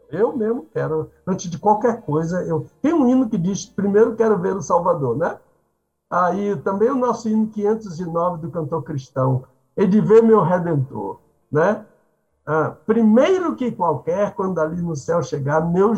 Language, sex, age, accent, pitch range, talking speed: Portuguese, male, 60-79, Brazilian, 155-220 Hz, 175 wpm